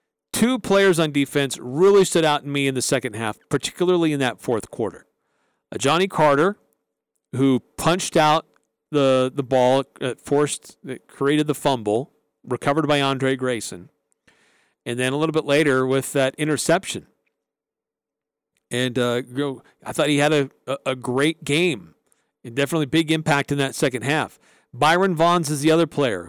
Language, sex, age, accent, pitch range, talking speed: English, male, 40-59, American, 130-155 Hz, 155 wpm